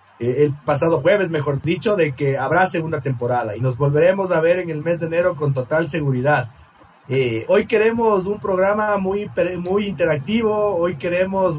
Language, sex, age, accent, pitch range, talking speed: Spanish, male, 30-49, Mexican, 145-195 Hz, 175 wpm